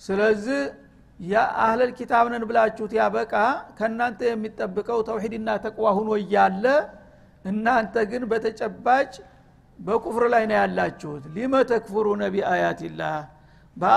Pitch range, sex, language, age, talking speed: 190-230 Hz, male, Amharic, 60-79, 110 wpm